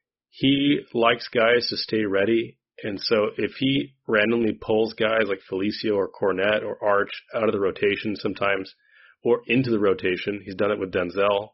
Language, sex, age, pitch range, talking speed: English, male, 30-49, 95-120 Hz, 170 wpm